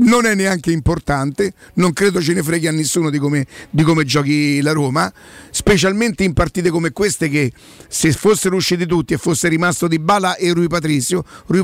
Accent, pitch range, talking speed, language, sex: native, 150-180 Hz, 190 wpm, Italian, male